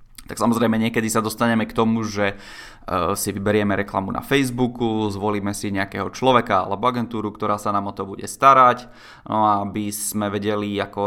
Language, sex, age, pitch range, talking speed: Czech, male, 20-39, 100-120 Hz, 170 wpm